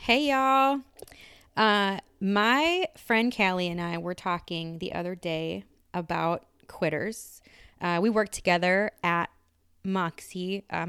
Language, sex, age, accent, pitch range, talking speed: English, female, 20-39, American, 165-200 Hz, 120 wpm